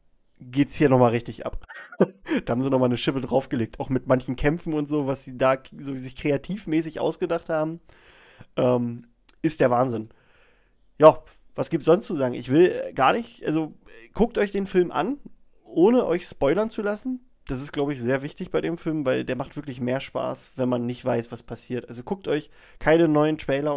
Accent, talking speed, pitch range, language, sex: German, 195 wpm, 130-175 Hz, German, male